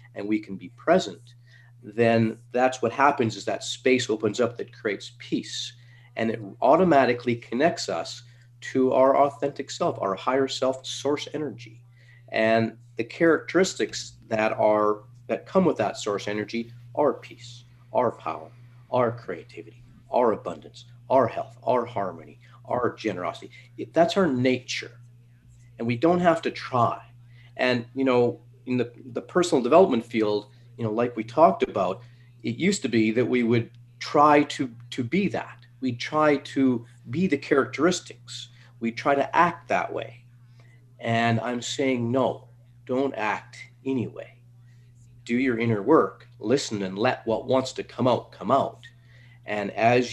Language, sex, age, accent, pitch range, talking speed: English, male, 50-69, American, 115-125 Hz, 155 wpm